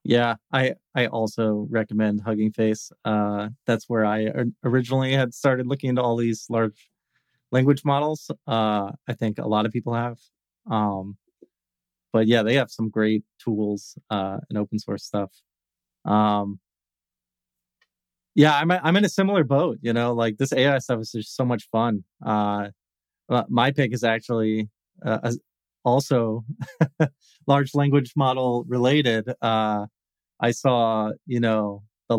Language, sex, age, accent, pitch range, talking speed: English, male, 30-49, American, 105-130 Hz, 150 wpm